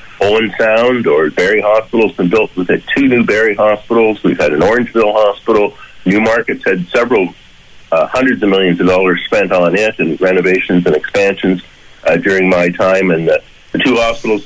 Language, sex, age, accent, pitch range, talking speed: English, male, 60-79, American, 100-130 Hz, 185 wpm